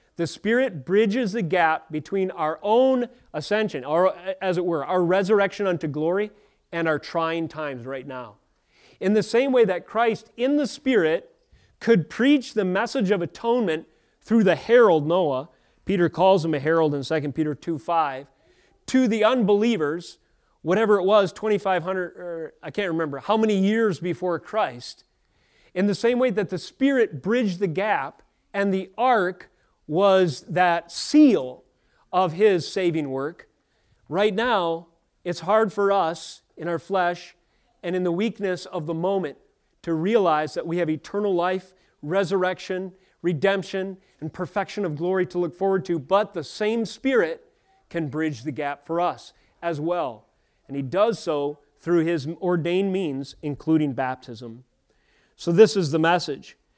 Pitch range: 165-210 Hz